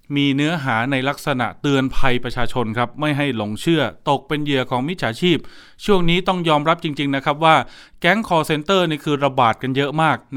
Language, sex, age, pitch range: Thai, male, 20-39, 120-160 Hz